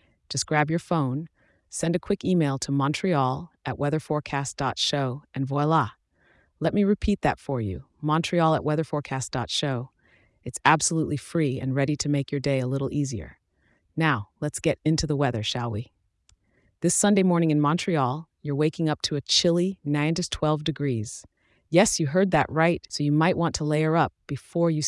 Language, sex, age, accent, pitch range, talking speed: English, female, 30-49, American, 135-165 Hz, 175 wpm